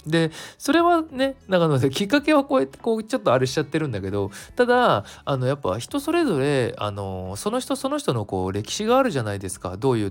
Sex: male